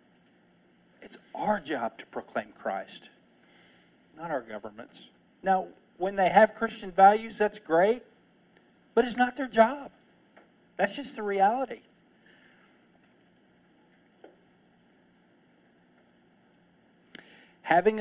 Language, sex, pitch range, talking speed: English, male, 135-205 Hz, 90 wpm